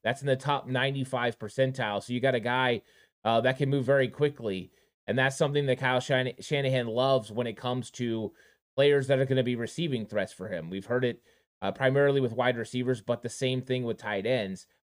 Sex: male